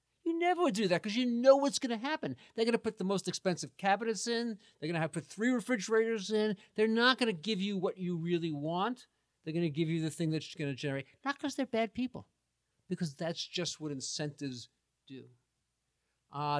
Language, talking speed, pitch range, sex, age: English, 230 wpm, 150-215 Hz, male, 50-69